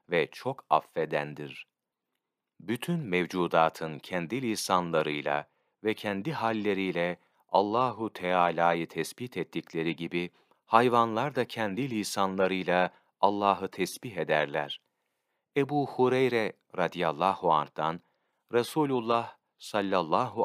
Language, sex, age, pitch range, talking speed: Turkish, male, 40-59, 85-120 Hz, 80 wpm